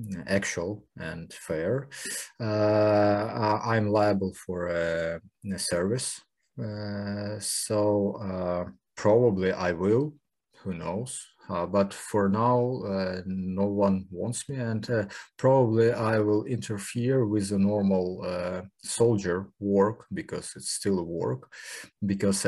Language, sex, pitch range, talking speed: English, male, 95-115 Hz, 115 wpm